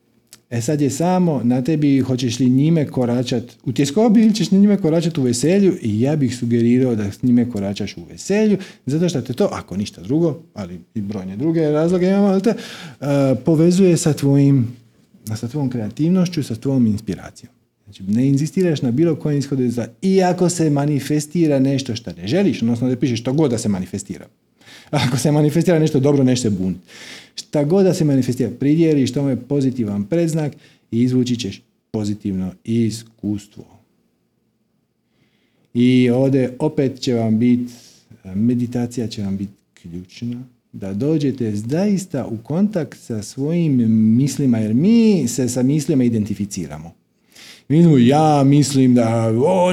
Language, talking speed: Croatian, 155 wpm